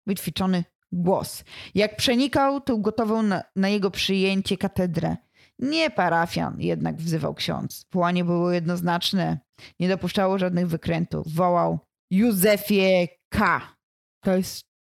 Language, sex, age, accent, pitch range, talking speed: Polish, female, 20-39, native, 185-235 Hz, 115 wpm